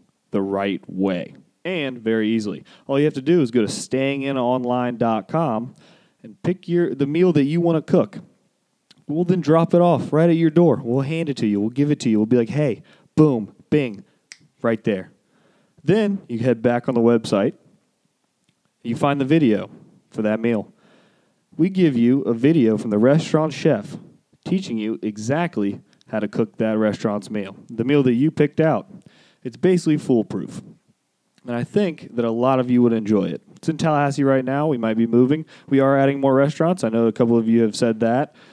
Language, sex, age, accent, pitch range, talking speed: English, male, 30-49, American, 115-150 Hz, 200 wpm